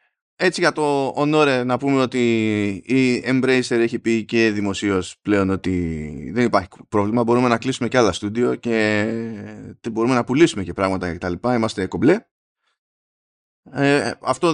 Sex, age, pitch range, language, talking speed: male, 20-39, 105-140 Hz, Greek, 140 wpm